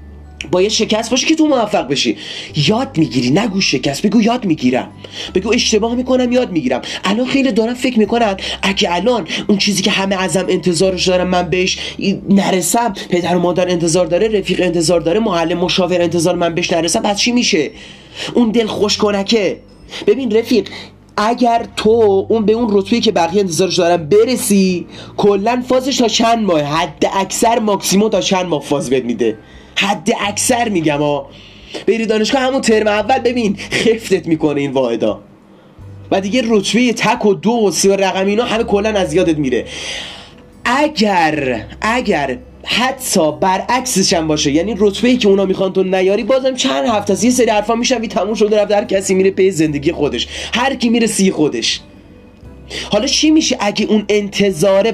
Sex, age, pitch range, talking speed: male, 30-49, 180-230 Hz, 170 wpm